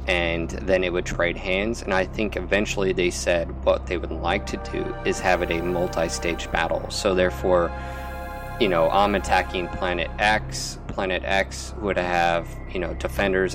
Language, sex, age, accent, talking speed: English, male, 20-39, American, 175 wpm